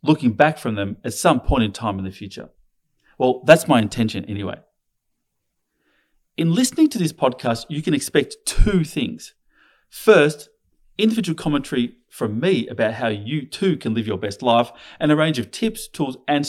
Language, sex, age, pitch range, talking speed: English, male, 30-49, 110-155 Hz, 175 wpm